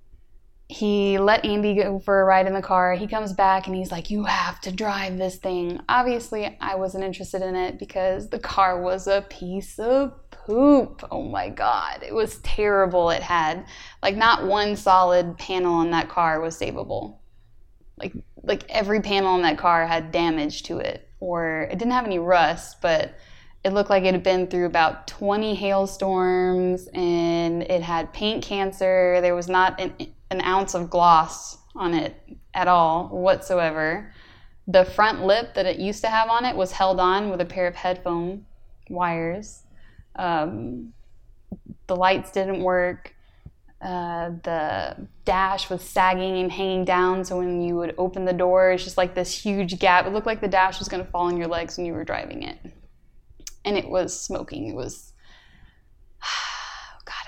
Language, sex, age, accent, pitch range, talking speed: English, female, 10-29, American, 175-195 Hz, 175 wpm